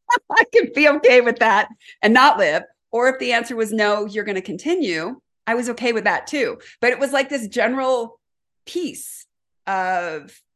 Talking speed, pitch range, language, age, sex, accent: 190 wpm, 180-240 Hz, English, 40-59, female, American